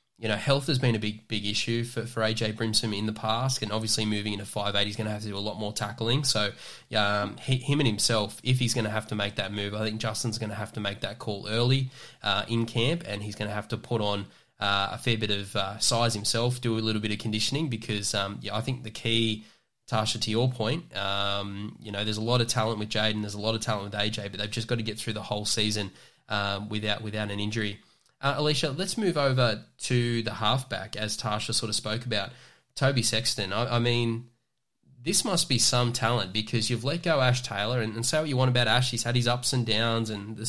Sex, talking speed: male, 255 wpm